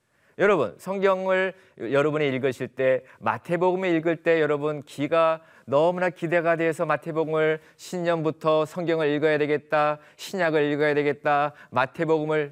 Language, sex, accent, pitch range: Korean, male, native, 140-185 Hz